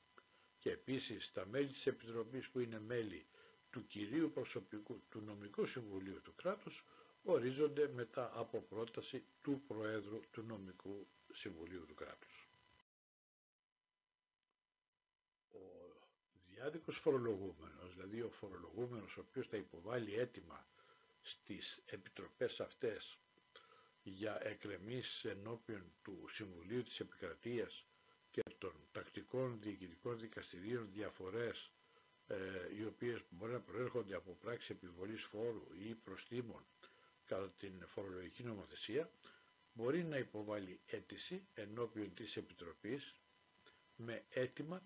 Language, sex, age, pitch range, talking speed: Greek, male, 60-79, 105-130 Hz, 105 wpm